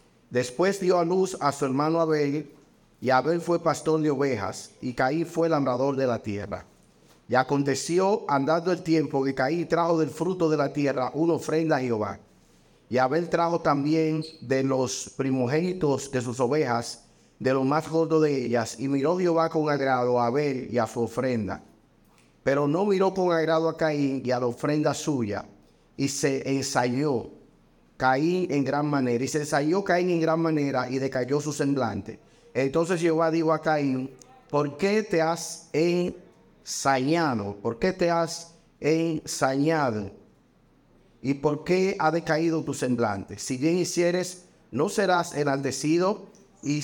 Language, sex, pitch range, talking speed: Spanish, male, 130-165 Hz, 160 wpm